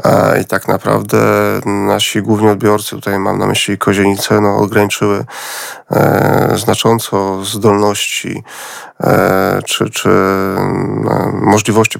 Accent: native